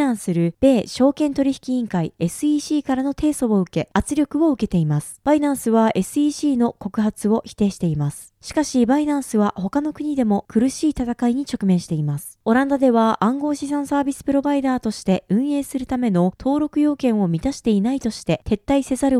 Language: Japanese